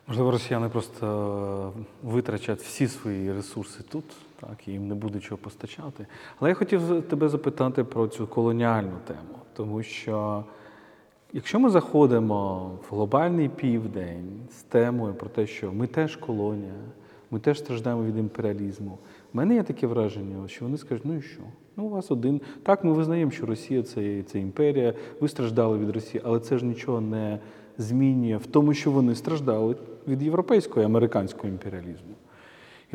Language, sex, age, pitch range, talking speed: Ukrainian, male, 30-49, 105-150 Hz, 160 wpm